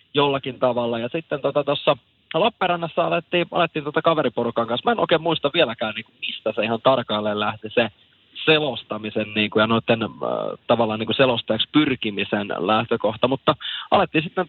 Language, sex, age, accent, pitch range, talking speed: Finnish, male, 20-39, native, 115-150 Hz, 135 wpm